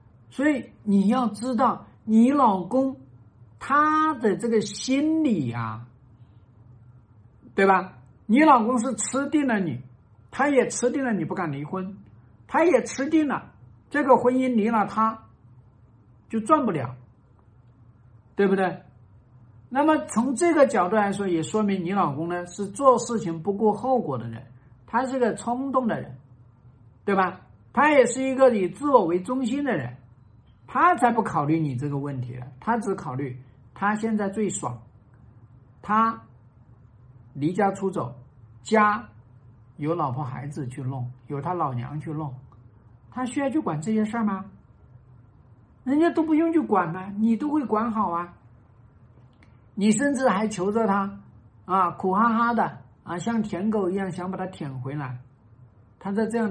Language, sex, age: Chinese, male, 60-79